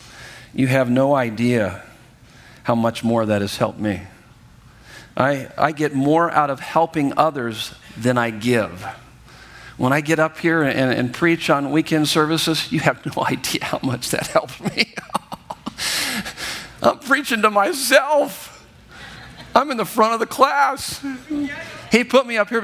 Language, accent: English, American